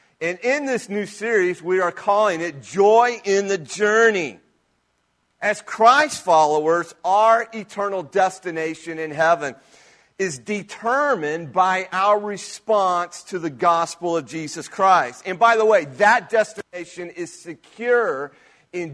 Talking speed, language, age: 130 wpm, English, 40-59